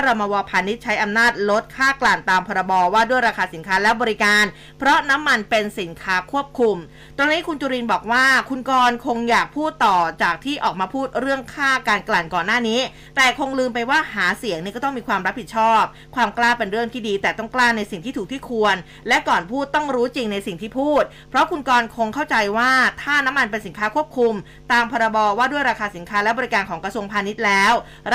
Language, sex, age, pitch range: Thai, female, 20-39, 210-260 Hz